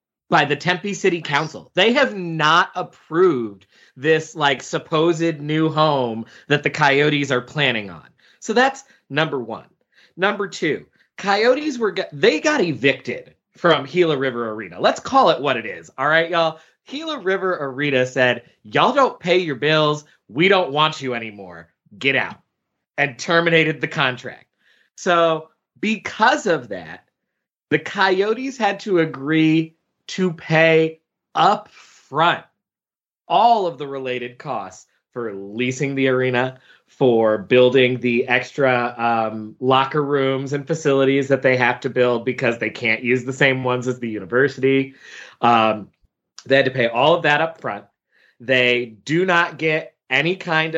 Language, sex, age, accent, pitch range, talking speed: English, male, 30-49, American, 125-165 Hz, 150 wpm